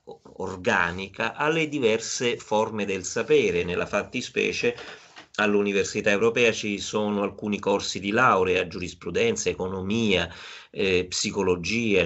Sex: male